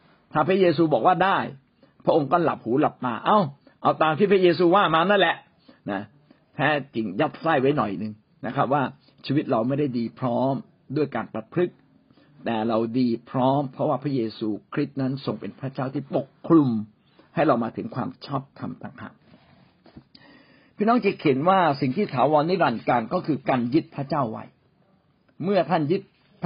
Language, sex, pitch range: Thai, male, 125-180 Hz